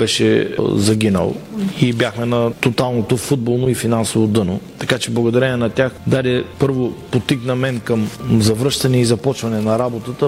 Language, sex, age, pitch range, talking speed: Bulgarian, male, 40-59, 115-130 Hz, 145 wpm